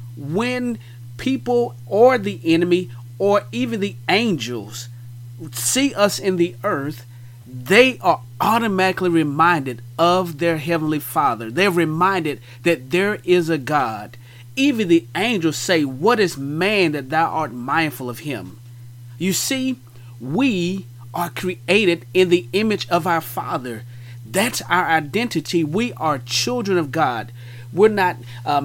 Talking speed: 135 wpm